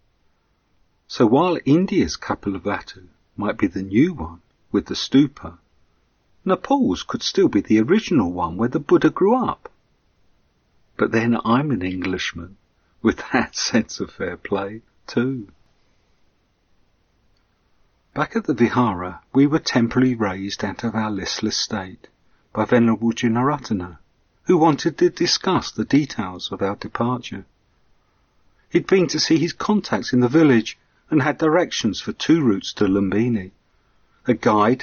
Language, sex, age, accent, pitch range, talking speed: English, male, 50-69, British, 100-140 Hz, 140 wpm